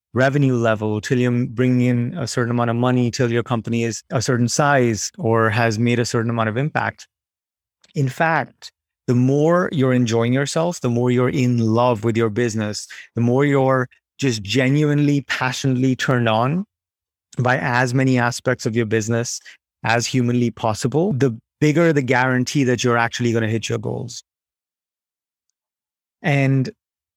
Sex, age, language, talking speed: male, 30-49, English, 160 wpm